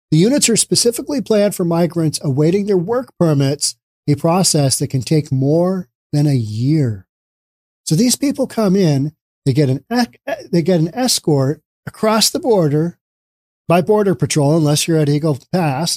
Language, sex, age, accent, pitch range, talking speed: English, male, 40-59, American, 140-195 Hz, 160 wpm